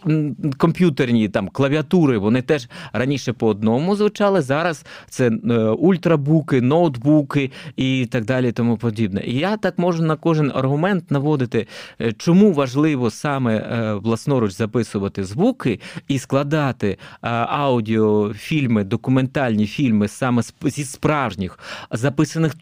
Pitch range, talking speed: 120-160 Hz, 110 wpm